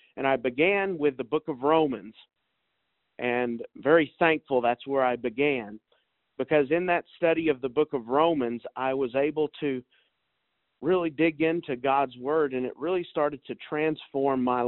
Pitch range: 125-150 Hz